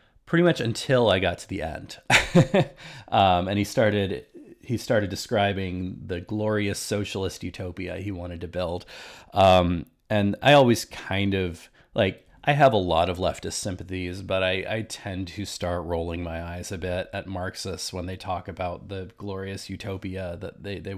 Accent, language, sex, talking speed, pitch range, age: American, English, male, 170 wpm, 90-110 Hz, 30-49